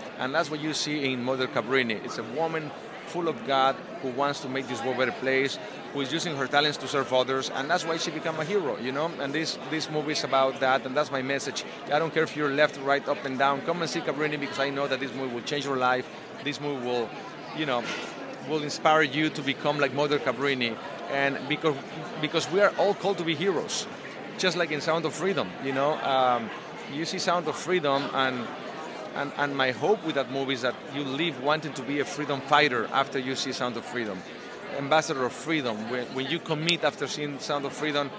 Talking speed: 235 wpm